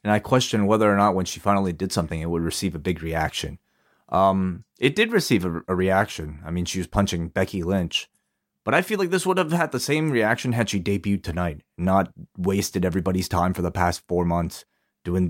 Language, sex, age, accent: English, male, 30-49, American